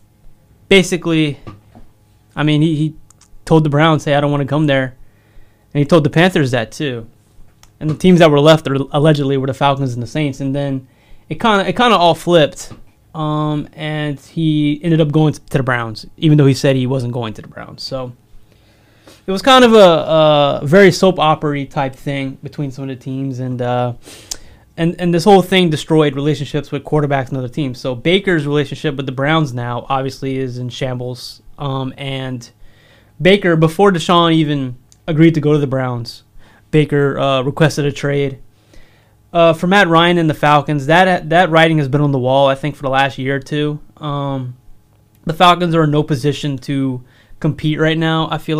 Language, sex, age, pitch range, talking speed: English, male, 20-39, 130-160 Hz, 200 wpm